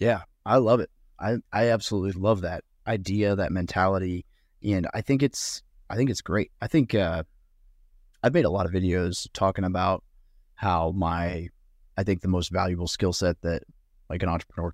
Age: 30-49